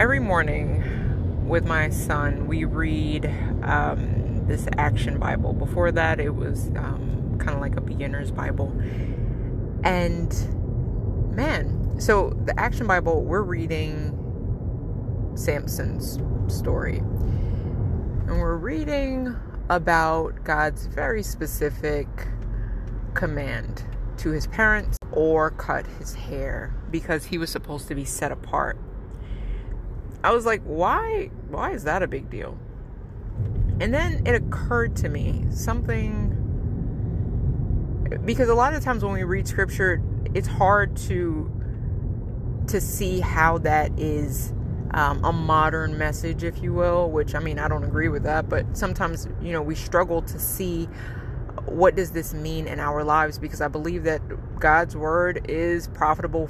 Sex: female